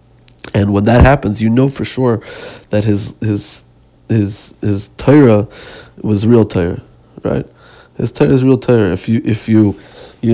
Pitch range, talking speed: 100-125 Hz, 165 wpm